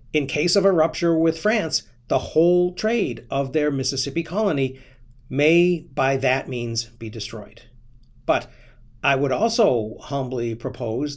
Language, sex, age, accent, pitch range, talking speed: English, male, 50-69, American, 120-150 Hz, 140 wpm